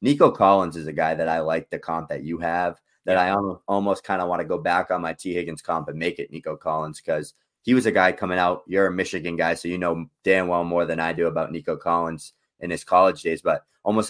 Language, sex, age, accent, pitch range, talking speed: English, male, 20-39, American, 85-95 Hz, 260 wpm